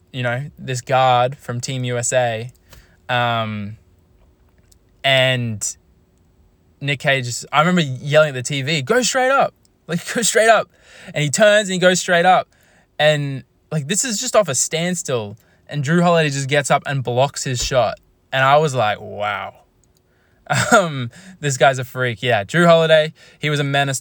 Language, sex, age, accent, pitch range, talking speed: English, male, 20-39, Australian, 115-145 Hz, 165 wpm